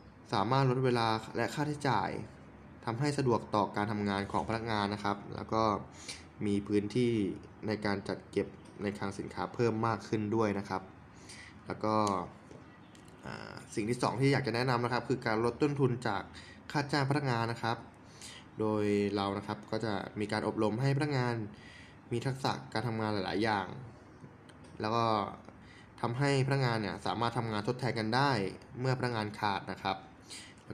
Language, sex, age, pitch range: Thai, male, 20-39, 100-125 Hz